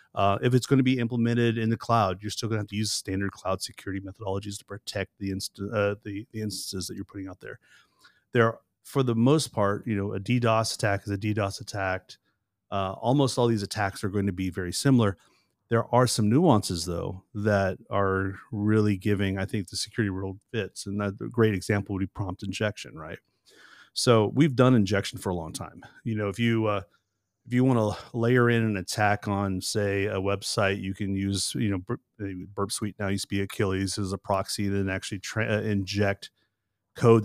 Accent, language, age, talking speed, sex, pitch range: American, English, 30-49, 210 wpm, male, 95-115 Hz